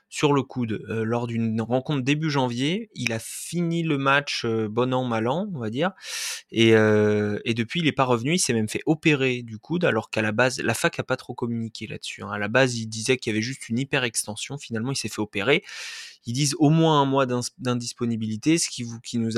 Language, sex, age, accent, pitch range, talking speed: French, male, 20-39, French, 115-140 Hz, 230 wpm